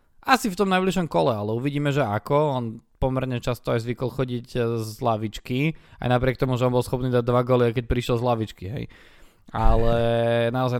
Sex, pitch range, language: male, 115-155 Hz, Slovak